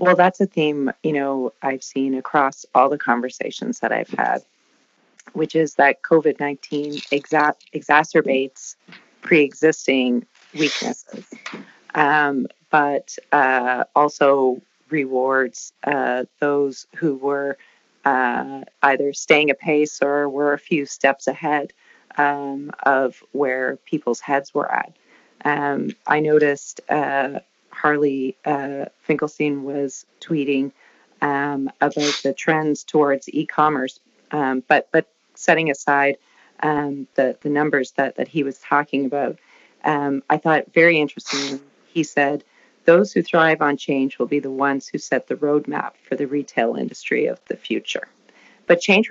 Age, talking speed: 30-49, 130 wpm